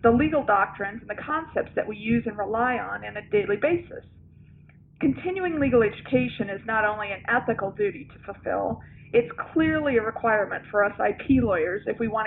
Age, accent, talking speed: 40-59, American, 185 wpm